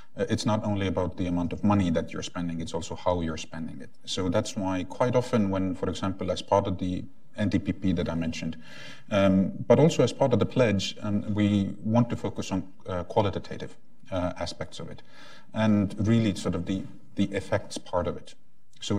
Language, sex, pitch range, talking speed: English, male, 90-105 Hz, 200 wpm